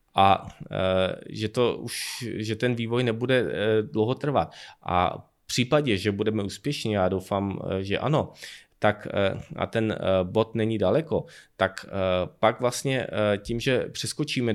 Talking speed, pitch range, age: 130 wpm, 100-115 Hz, 20-39